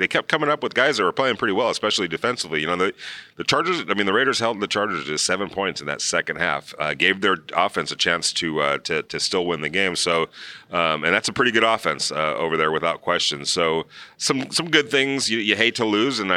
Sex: male